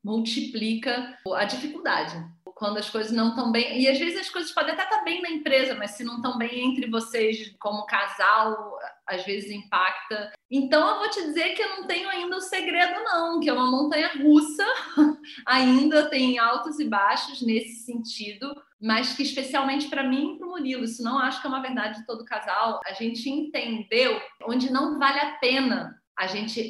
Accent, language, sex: Brazilian, Portuguese, female